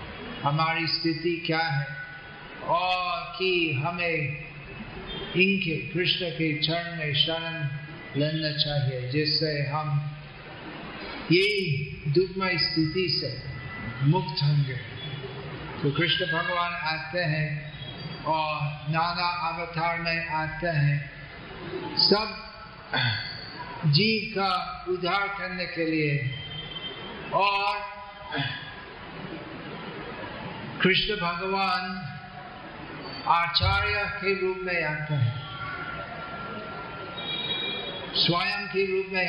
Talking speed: 80 wpm